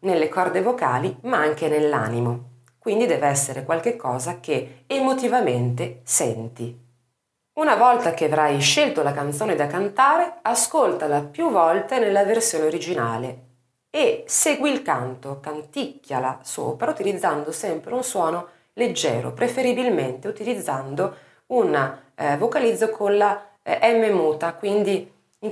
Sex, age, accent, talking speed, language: female, 30-49, native, 120 wpm, Italian